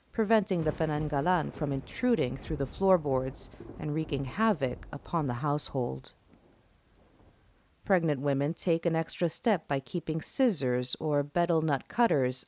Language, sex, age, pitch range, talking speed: English, female, 50-69, 140-185 Hz, 130 wpm